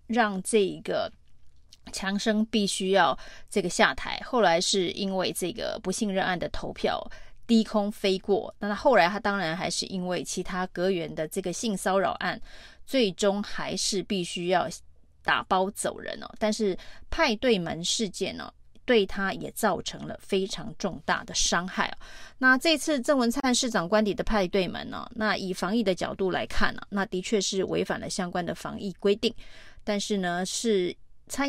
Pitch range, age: 190-230 Hz, 30-49